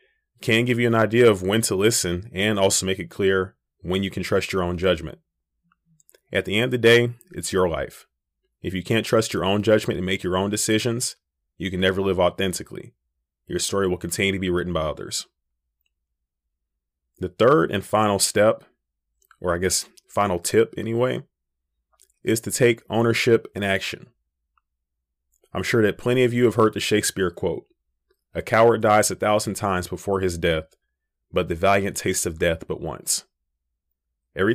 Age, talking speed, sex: 30-49, 175 wpm, male